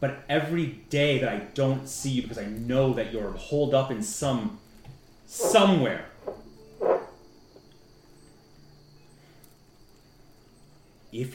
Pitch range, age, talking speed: 90-135 Hz, 30-49, 100 wpm